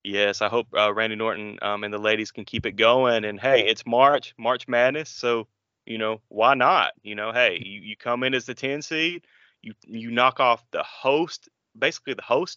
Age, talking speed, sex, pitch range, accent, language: 20-39, 215 wpm, male, 105-125 Hz, American, English